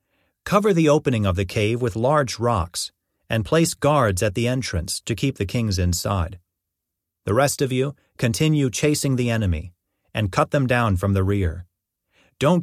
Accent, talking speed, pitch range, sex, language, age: American, 170 wpm, 95-135 Hz, male, English, 40-59